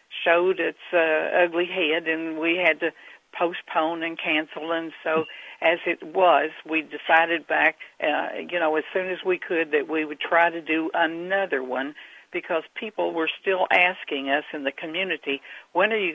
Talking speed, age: 180 wpm, 60-79